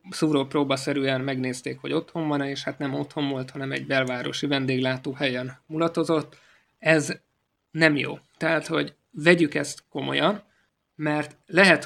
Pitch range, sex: 135-155 Hz, male